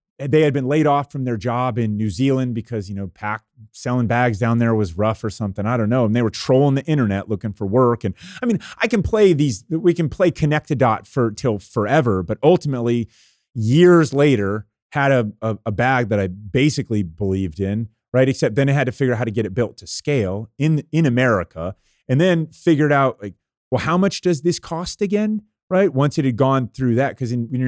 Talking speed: 225 wpm